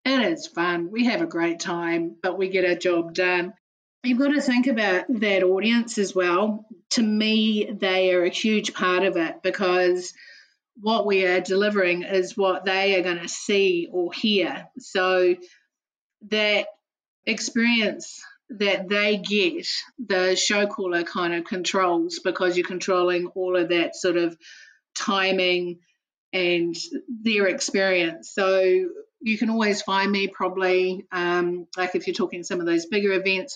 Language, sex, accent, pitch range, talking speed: English, female, Australian, 180-225 Hz, 155 wpm